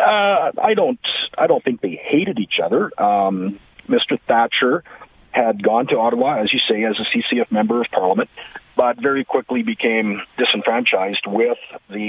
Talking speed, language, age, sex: 165 wpm, English, 40-59, male